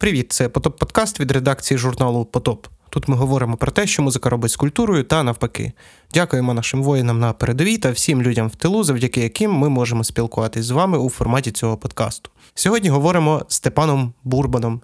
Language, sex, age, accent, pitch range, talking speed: Ukrainian, male, 20-39, native, 125-155 Hz, 180 wpm